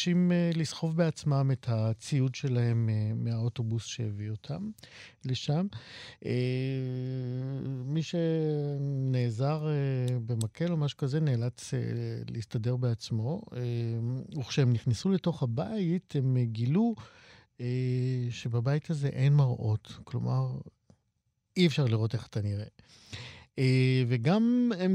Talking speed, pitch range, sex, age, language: 90 wpm, 120-155 Hz, male, 50-69, Hebrew